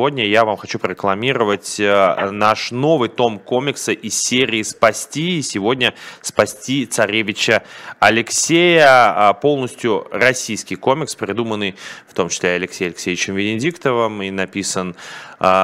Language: Russian